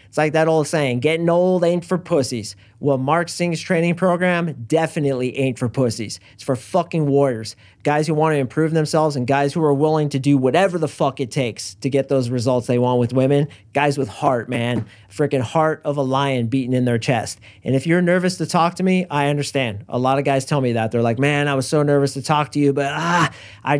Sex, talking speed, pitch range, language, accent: male, 235 wpm, 130-160 Hz, English, American